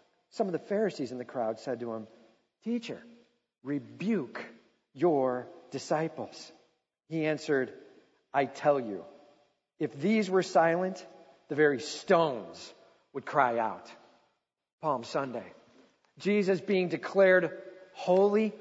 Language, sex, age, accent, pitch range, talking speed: English, male, 40-59, American, 145-210 Hz, 115 wpm